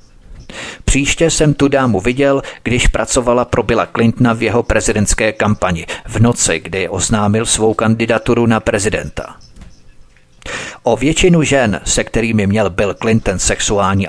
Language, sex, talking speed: Czech, male, 130 wpm